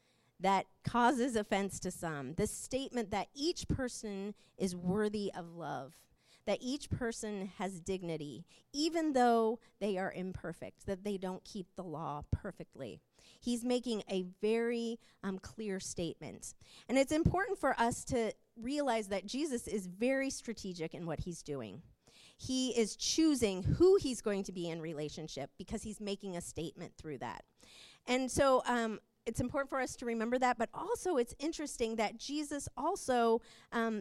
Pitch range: 195-255 Hz